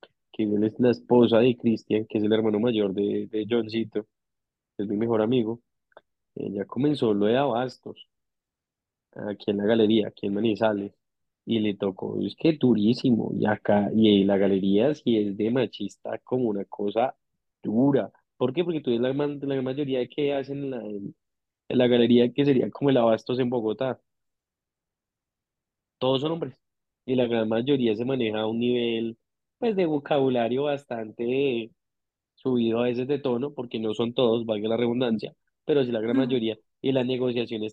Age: 20-39